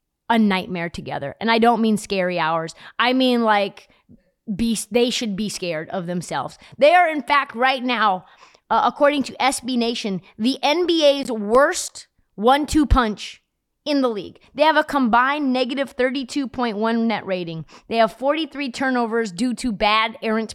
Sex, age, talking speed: female, 20-39, 155 wpm